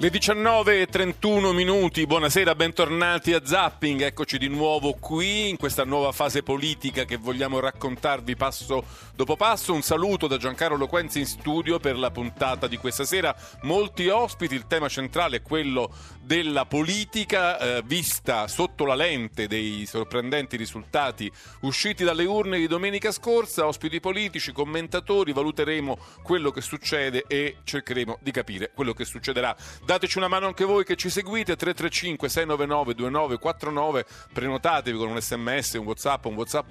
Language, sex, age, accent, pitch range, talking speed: Italian, male, 40-59, native, 120-170 Hz, 145 wpm